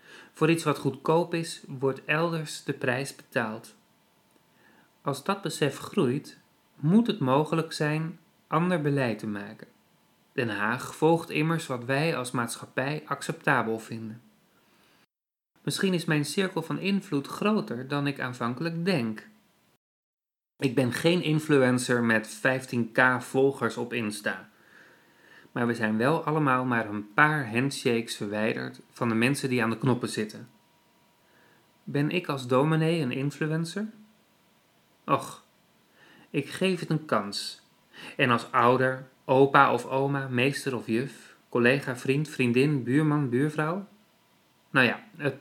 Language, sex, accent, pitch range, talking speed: Dutch, male, Dutch, 120-160 Hz, 130 wpm